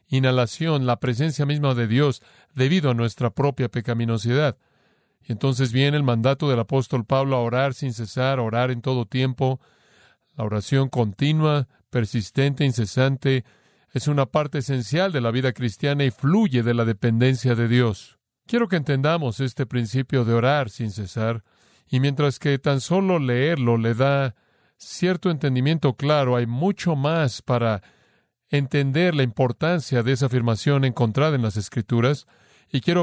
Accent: Mexican